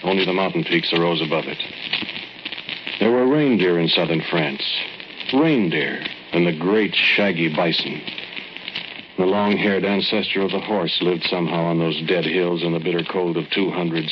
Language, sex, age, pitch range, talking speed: English, male, 60-79, 85-95 Hz, 155 wpm